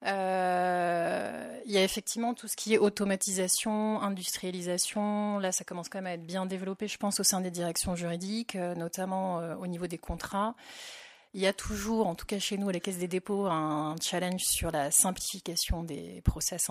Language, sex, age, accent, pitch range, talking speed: French, female, 30-49, French, 180-210 Hz, 190 wpm